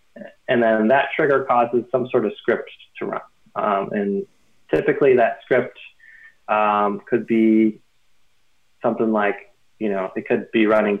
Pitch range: 100-125 Hz